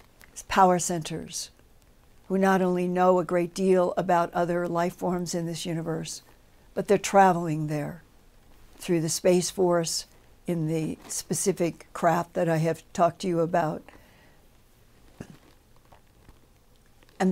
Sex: female